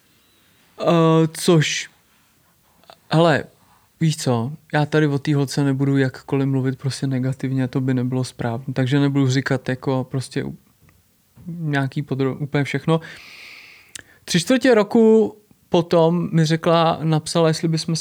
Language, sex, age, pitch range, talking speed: Czech, male, 20-39, 140-165 Hz, 125 wpm